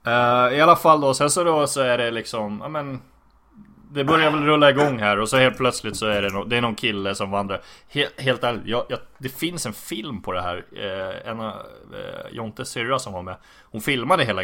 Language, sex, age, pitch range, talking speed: Swedish, male, 20-39, 100-130 Hz, 230 wpm